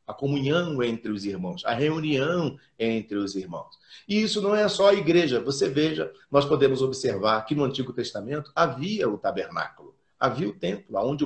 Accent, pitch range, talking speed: Brazilian, 120-175 Hz, 175 wpm